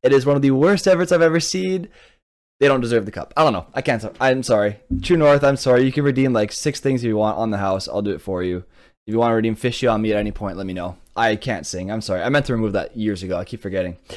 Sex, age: male, 20-39